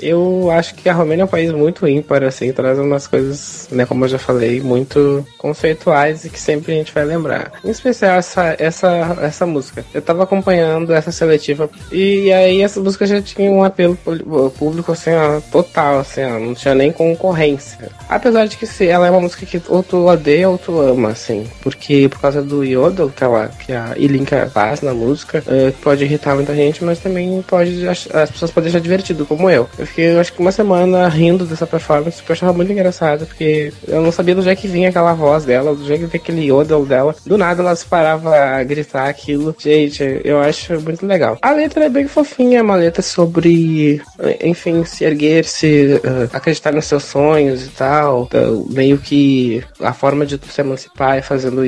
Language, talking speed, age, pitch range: Portuguese, 205 wpm, 20-39, 140-180 Hz